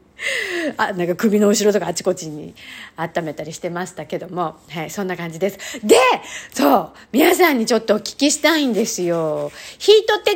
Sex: female